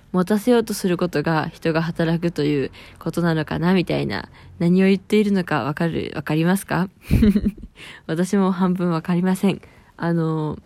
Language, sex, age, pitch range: Japanese, female, 20-39, 155-190 Hz